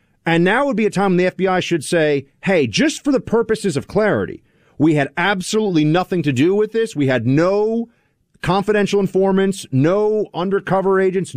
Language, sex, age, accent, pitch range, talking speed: English, male, 40-59, American, 145-195 Hz, 175 wpm